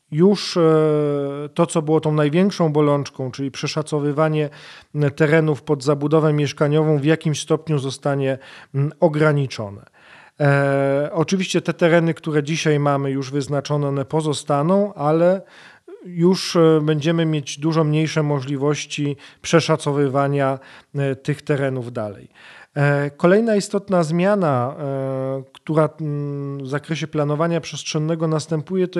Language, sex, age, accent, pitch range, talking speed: Polish, male, 40-59, native, 140-160 Hz, 100 wpm